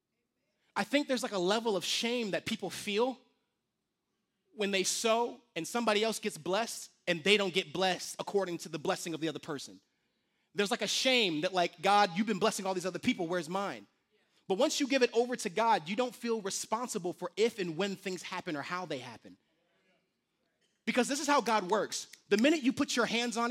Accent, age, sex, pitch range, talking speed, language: American, 30-49, male, 180-235 Hz, 210 wpm, English